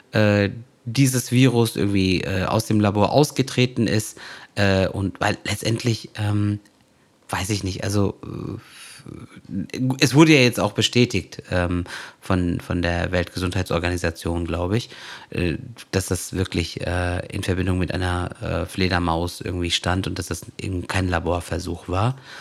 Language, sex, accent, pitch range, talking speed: German, male, German, 90-110 Hz, 140 wpm